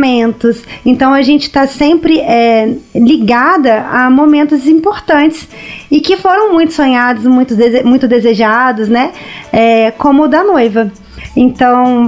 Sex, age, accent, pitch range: female, 20-39, Brazilian, 235-285 Hz